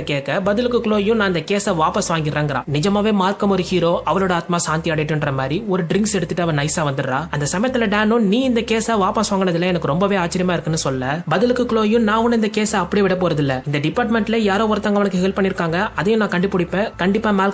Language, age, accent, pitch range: Tamil, 20-39, native, 170-225 Hz